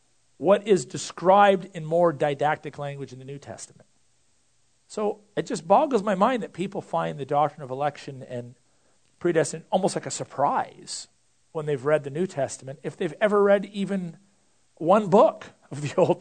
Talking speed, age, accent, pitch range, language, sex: 170 wpm, 50-69, American, 135-195 Hz, English, male